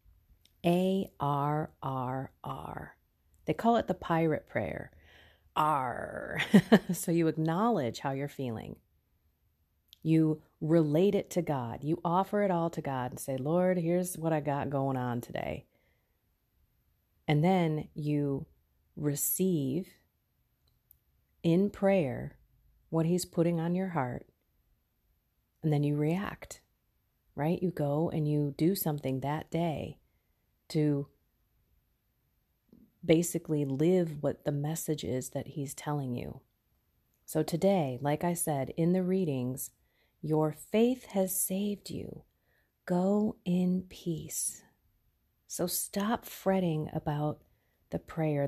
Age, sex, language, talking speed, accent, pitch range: 40-59, female, English, 115 wpm, American, 140-170 Hz